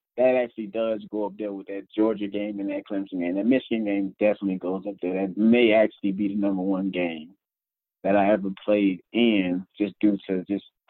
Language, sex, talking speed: English, male, 210 wpm